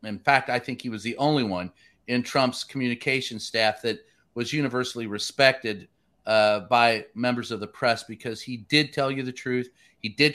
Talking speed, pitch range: 185 wpm, 120-160 Hz